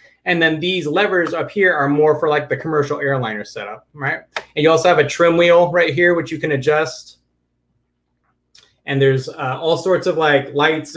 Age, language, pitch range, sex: 30-49, English, 140-180 Hz, male